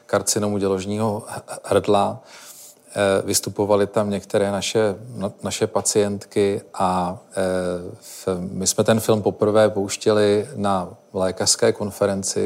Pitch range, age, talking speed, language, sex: 95-105 Hz, 40-59, 90 wpm, Czech, male